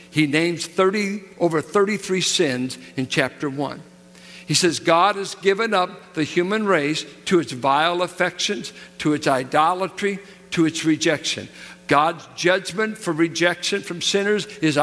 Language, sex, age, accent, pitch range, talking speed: English, male, 60-79, American, 165-205 Hz, 140 wpm